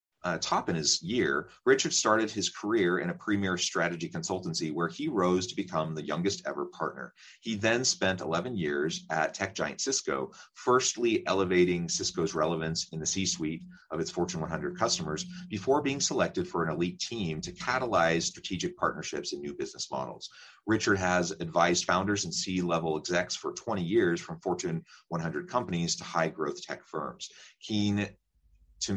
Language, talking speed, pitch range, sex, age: English, 165 wpm, 85-115 Hz, male, 30-49